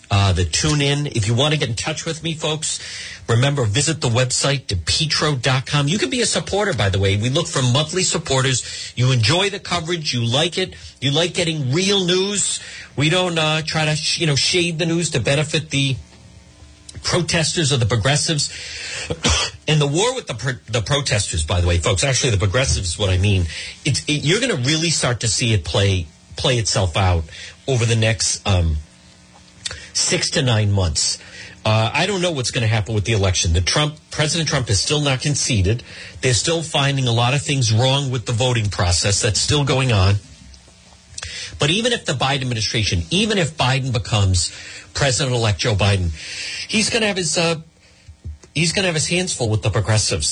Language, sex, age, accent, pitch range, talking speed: English, male, 40-59, American, 100-155 Hz, 200 wpm